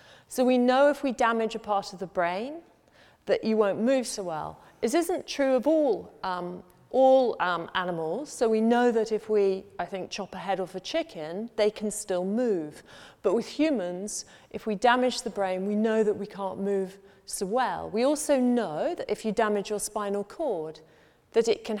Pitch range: 200-250 Hz